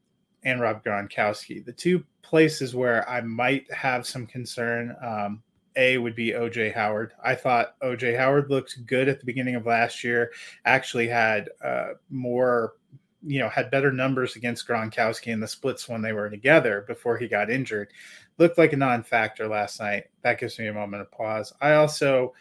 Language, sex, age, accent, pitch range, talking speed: English, male, 20-39, American, 110-130 Hz, 180 wpm